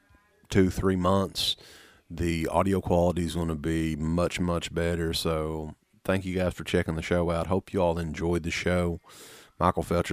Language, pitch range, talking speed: English, 80-95 Hz, 180 wpm